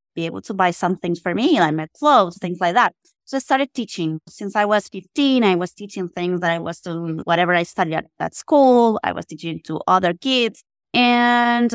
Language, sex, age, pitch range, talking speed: English, female, 20-39, 175-225 Hz, 220 wpm